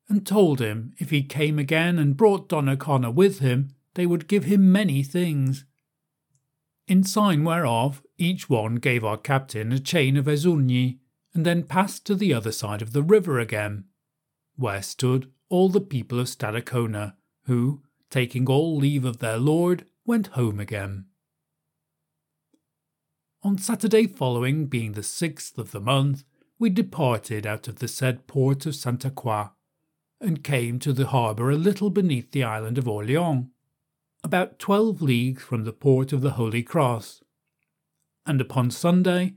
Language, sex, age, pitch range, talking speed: English, male, 40-59, 125-175 Hz, 155 wpm